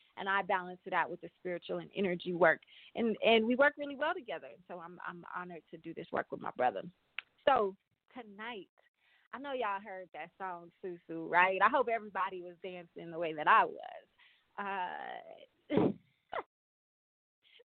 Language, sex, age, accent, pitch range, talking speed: English, female, 20-39, American, 180-245 Hz, 170 wpm